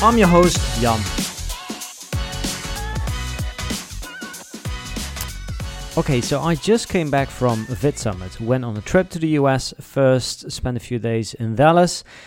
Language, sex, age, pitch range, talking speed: English, male, 30-49, 110-140 Hz, 125 wpm